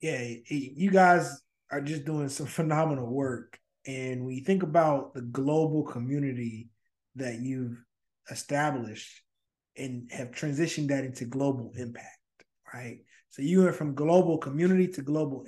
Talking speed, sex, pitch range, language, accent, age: 140 wpm, male, 125-150 Hz, English, American, 20-39